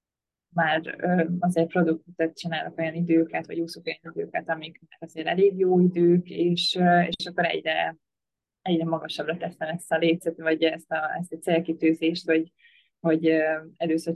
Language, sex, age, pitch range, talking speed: Hungarian, female, 20-39, 160-185 Hz, 140 wpm